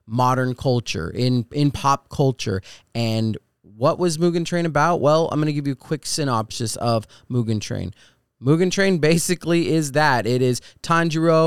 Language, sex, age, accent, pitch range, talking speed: English, male, 20-39, American, 115-145 Hz, 165 wpm